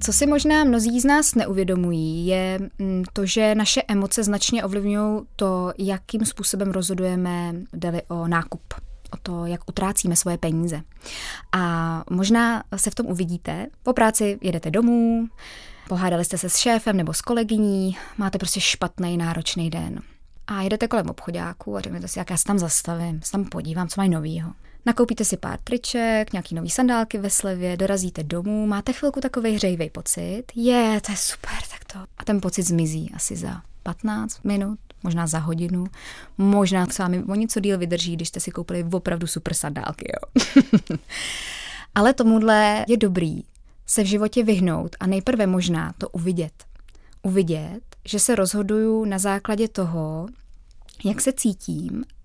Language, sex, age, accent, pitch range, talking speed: Czech, female, 20-39, native, 175-220 Hz, 165 wpm